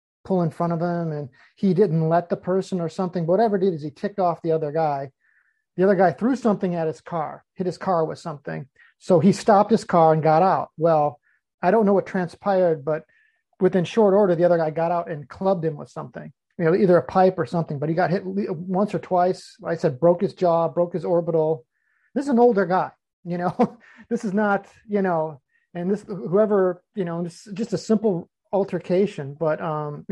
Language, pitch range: English, 160-190 Hz